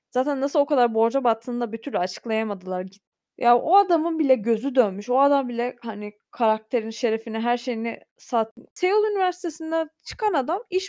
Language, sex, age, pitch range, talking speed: Turkish, female, 20-39, 225-290 Hz, 160 wpm